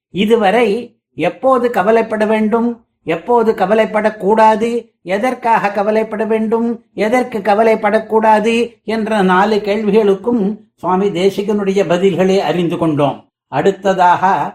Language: Tamil